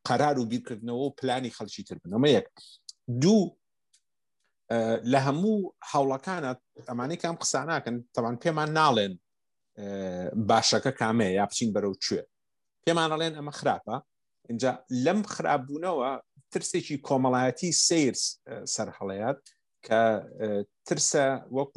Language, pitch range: Persian, 105-135 Hz